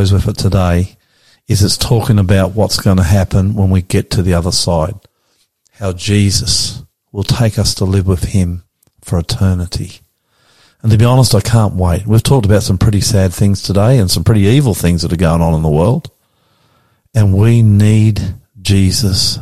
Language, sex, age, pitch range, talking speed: English, male, 50-69, 95-115 Hz, 185 wpm